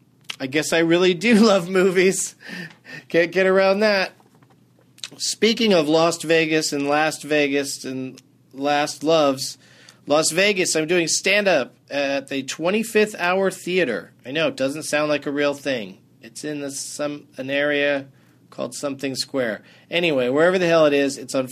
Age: 40-59